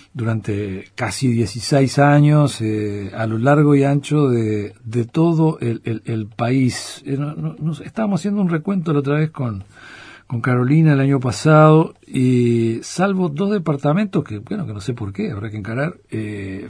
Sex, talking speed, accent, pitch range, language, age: male, 175 wpm, Argentinian, 110-150 Hz, Spanish, 50-69